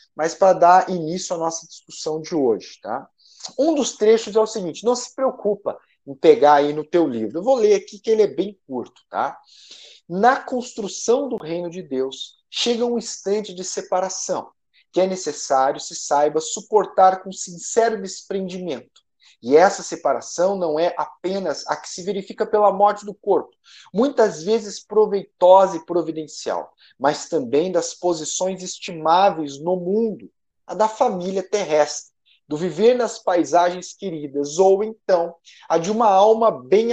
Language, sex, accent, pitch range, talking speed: Portuguese, male, Brazilian, 170-220 Hz, 160 wpm